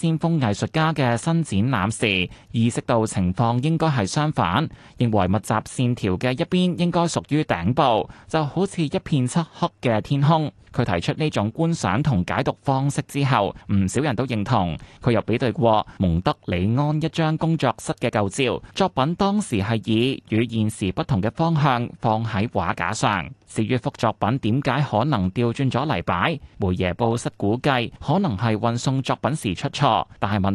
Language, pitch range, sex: Chinese, 100-150 Hz, male